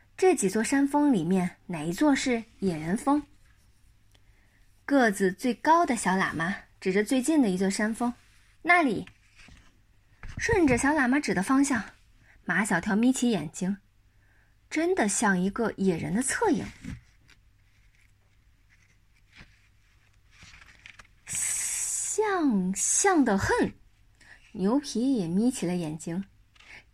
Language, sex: Chinese, female